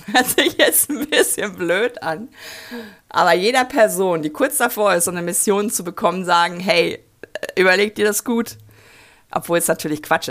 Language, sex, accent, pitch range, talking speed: German, female, German, 160-210 Hz, 170 wpm